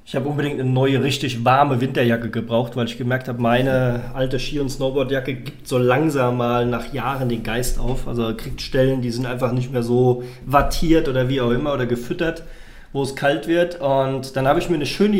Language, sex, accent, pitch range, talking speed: German, male, German, 125-160 Hz, 215 wpm